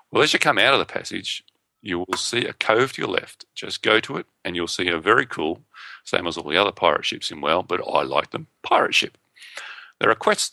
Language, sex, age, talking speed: English, male, 40-59, 250 wpm